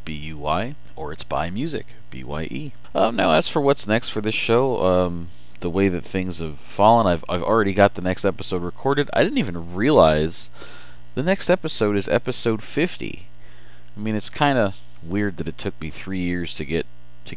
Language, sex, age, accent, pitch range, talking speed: English, male, 40-59, American, 75-100 Hz, 205 wpm